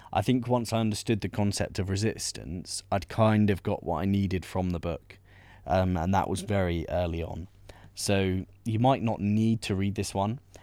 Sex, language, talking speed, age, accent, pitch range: male, English, 200 wpm, 20-39, British, 95-105 Hz